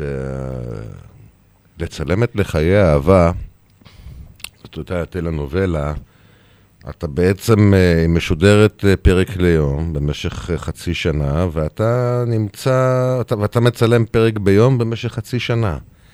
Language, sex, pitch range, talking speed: Hebrew, male, 80-110 Hz, 90 wpm